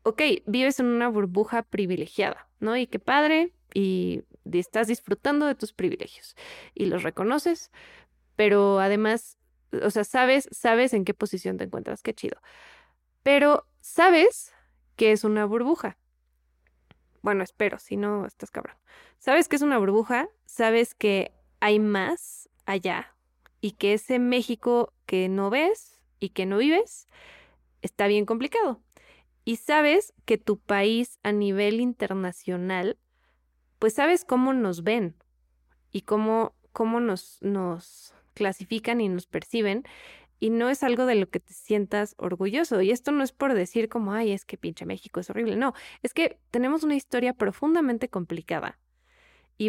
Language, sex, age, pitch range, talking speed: Spanish, female, 20-39, 190-245 Hz, 150 wpm